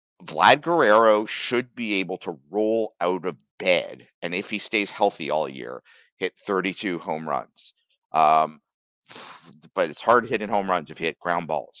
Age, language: 50-69, English